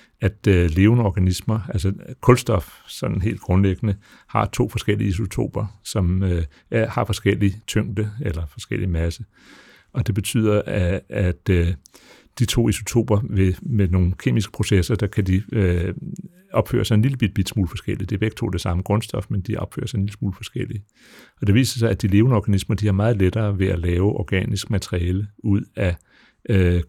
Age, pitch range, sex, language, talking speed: 60-79, 95-110 Hz, male, Danish, 180 wpm